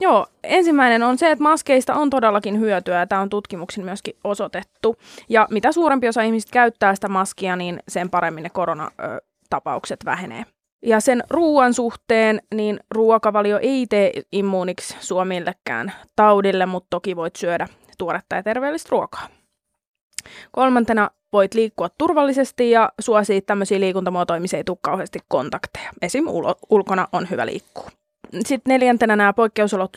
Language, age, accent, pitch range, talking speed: Finnish, 20-39, native, 185-230 Hz, 135 wpm